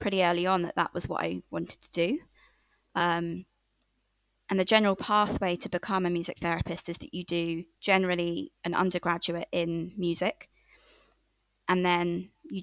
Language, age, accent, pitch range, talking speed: English, 20-39, British, 175-200 Hz, 155 wpm